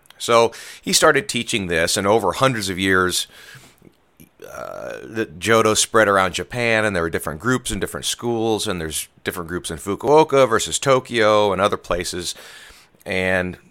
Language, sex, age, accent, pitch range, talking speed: English, male, 30-49, American, 85-110 Hz, 160 wpm